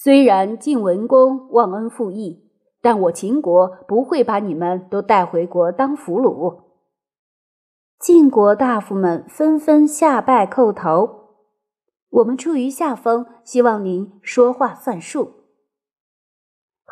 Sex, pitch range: female, 200-285 Hz